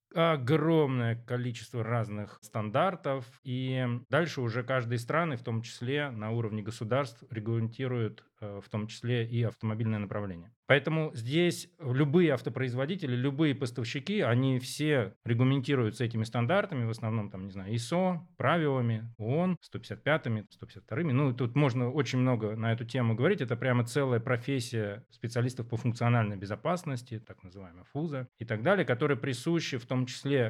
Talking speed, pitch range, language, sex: 140 wpm, 110-140 Hz, Russian, male